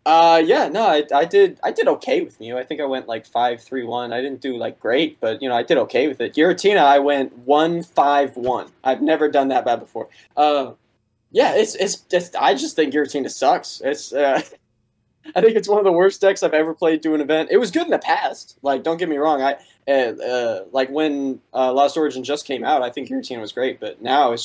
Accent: American